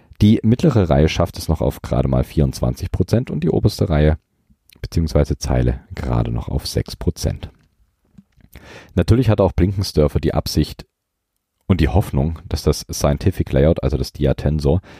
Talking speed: 150 wpm